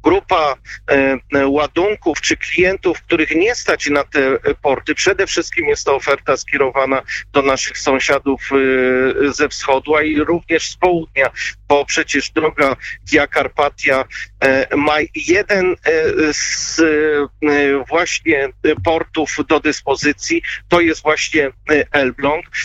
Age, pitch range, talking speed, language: 50-69, 140-175 Hz, 105 wpm, Polish